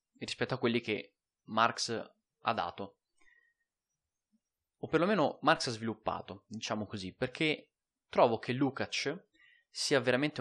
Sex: male